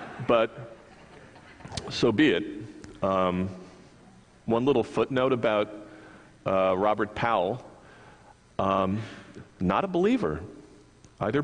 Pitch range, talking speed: 95-130 Hz, 90 wpm